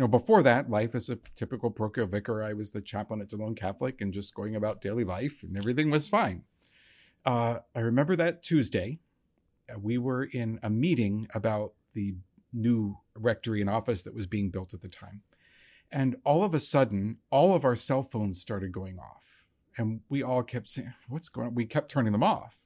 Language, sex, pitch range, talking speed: English, male, 100-125 Hz, 205 wpm